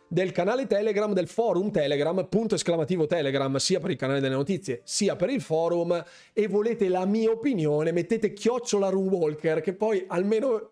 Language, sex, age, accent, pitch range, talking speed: Italian, male, 30-49, native, 155-220 Hz, 170 wpm